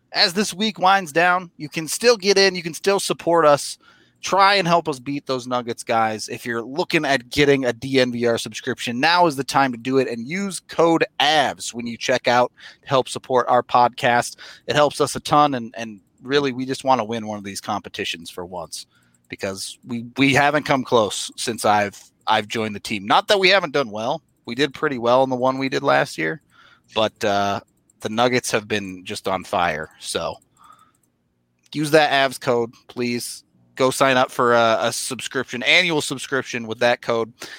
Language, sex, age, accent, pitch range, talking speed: English, male, 30-49, American, 120-170 Hz, 200 wpm